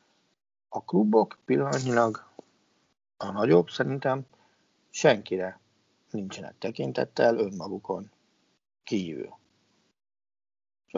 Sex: male